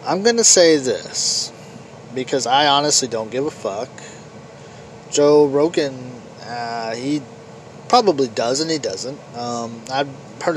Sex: male